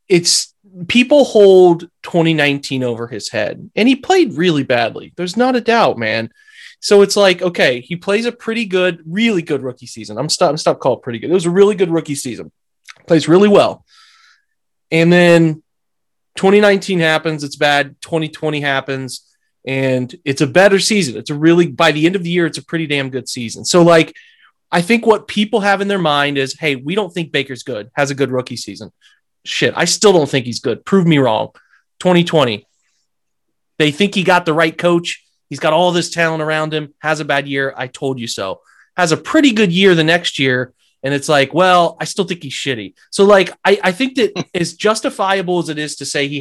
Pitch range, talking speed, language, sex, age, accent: 135-185 Hz, 210 wpm, English, male, 30-49, American